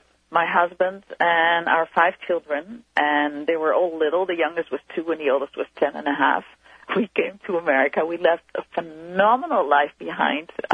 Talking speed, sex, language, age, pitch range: 185 wpm, female, English, 40-59, 150-195 Hz